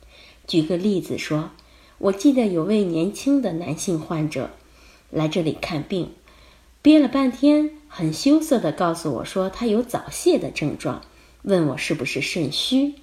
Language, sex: Chinese, female